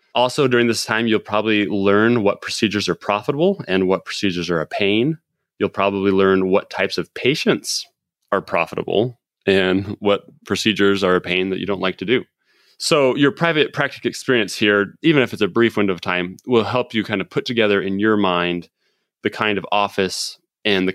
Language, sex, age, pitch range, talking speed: English, male, 30-49, 95-110 Hz, 195 wpm